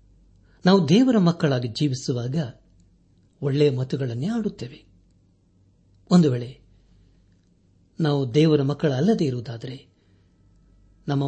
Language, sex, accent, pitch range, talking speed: Kannada, male, native, 95-150 Hz, 75 wpm